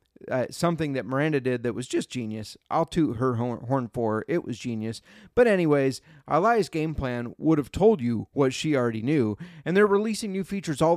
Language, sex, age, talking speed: English, male, 30-49, 195 wpm